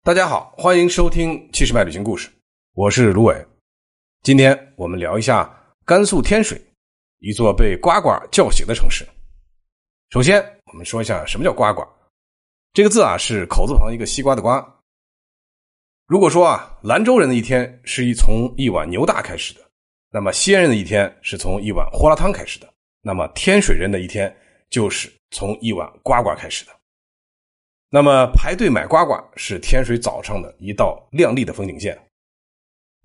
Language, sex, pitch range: Chinese, male, 95-140 Hz